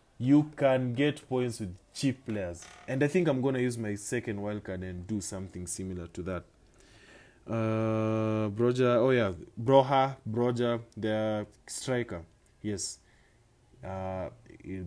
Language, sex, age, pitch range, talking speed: English, male, 20-39, 95-125 Hz, 135 wpm